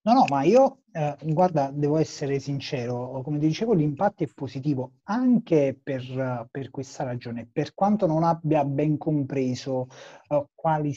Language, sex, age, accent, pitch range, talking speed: Italian, male, 30-49, native, 130-155 Hz, 155 wpm